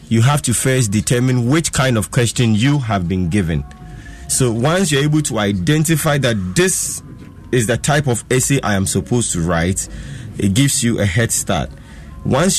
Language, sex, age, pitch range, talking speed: English, male, 30-49, 105-140 Hz, 180 wpm